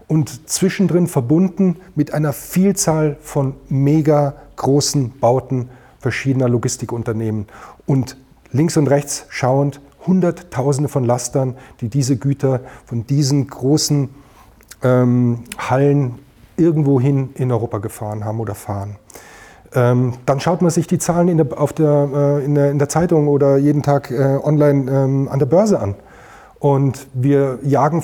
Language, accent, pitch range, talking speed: German, German, 130-155 Hz, 140 wpm